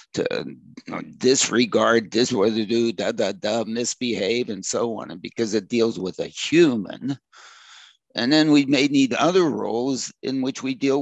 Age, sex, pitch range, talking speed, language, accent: 50-69, male, 115-150 Hz, 170 wpm, English, American